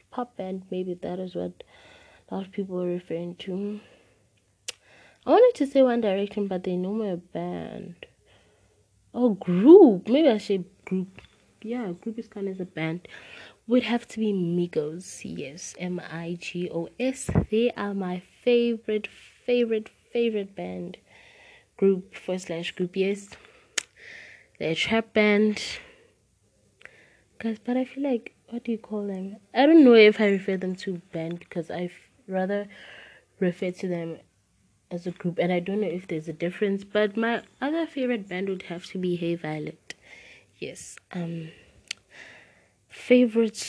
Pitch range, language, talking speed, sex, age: 180-230 Hz, English, 155 wpm, female, 20-39